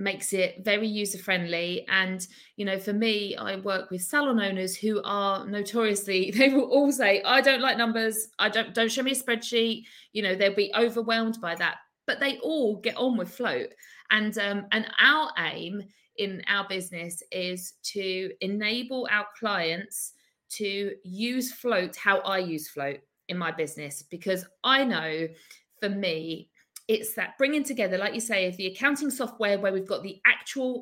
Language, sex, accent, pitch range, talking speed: English, female, British, 190-235 Hz, 175 wpm